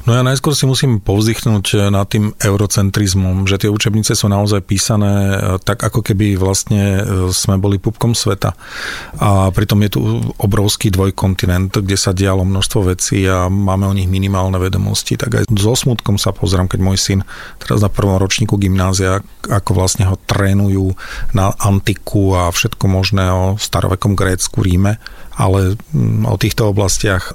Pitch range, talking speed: 95-110 Hz, 155 wpm